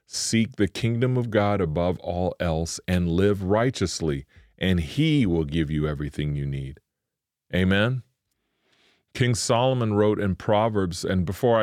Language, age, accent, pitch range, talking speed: English, 30-49, American, 85-105 Hz, 140 wpm